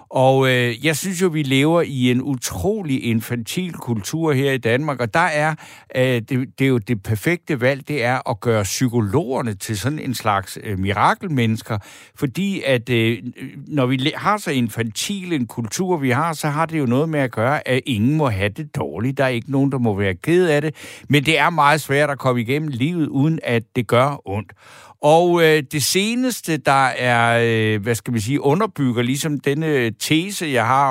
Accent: native